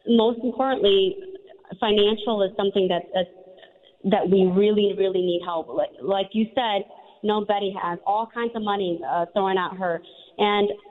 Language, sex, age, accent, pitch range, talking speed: English, female, 40-59, American, 185-230 Hz, 155 wpm